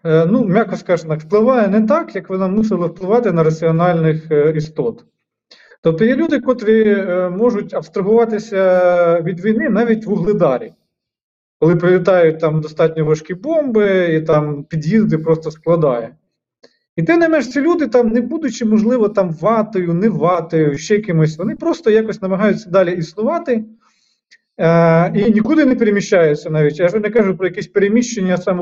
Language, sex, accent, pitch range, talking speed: Ukrainian, male, native, 165-225 Hz, 145 wpm